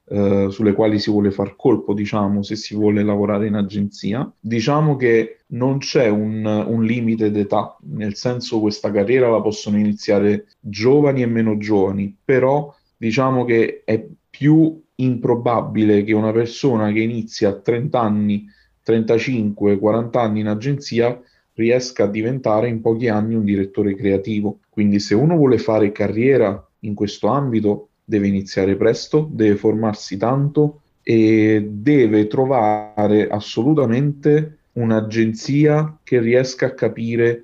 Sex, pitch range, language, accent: male, 105-125 Hz, Italian, native